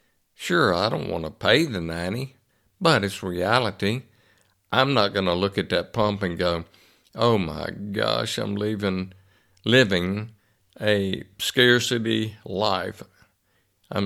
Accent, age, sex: American, 60-79, male